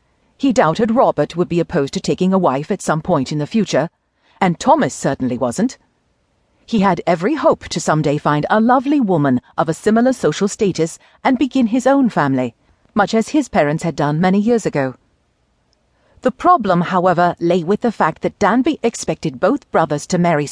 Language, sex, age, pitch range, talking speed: English, female, 40-59, 155-235 Hz, 185 wpm